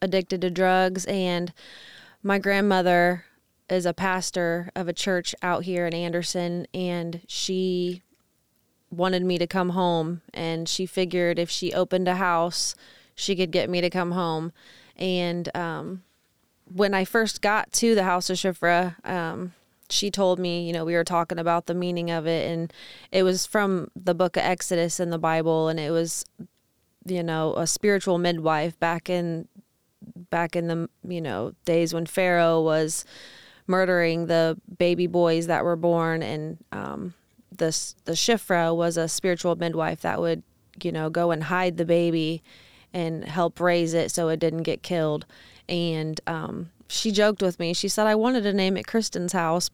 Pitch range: 170-185 Hz